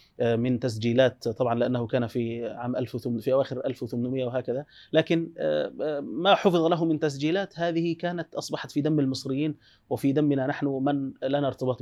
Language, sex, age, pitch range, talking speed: Arabic, male, 30-49, 125-150 Hz, 155 wpm